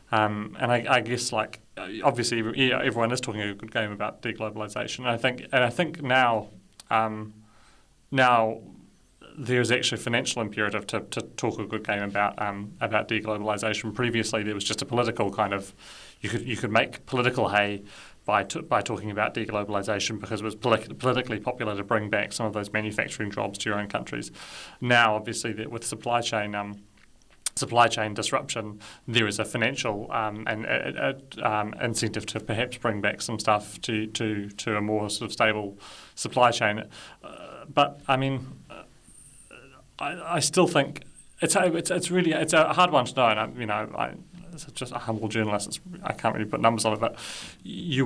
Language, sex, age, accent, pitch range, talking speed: English, male, 30-49, British, 105-125 Hz, 195 wpm